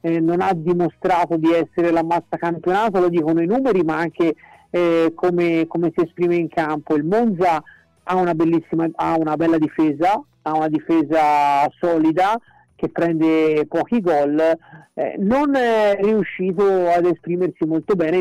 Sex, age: male, 50-69